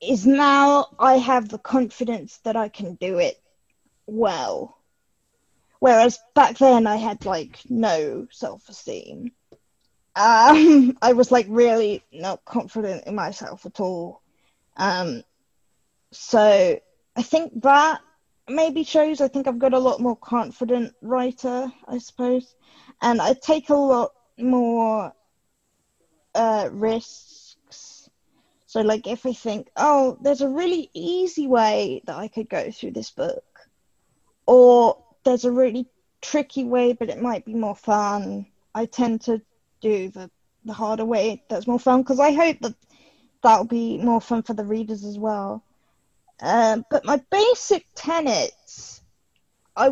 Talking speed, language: 140 wpm, English